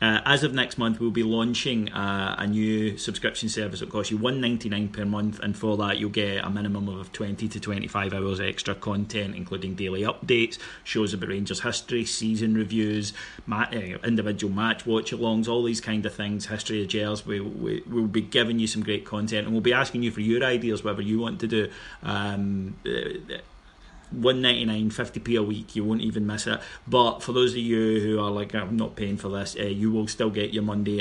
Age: 30-49